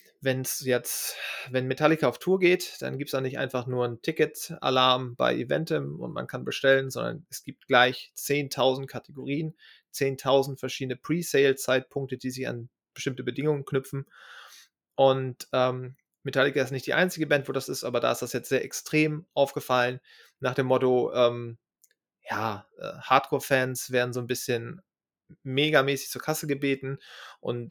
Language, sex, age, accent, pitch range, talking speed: German, male, 30-49, German, 125-140 Hz, 160 wpm